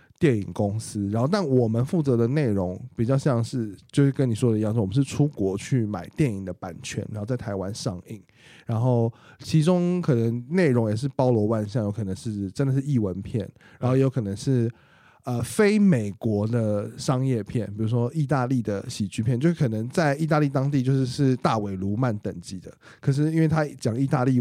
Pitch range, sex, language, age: 105-140 Hz, male, Chinese, 20-39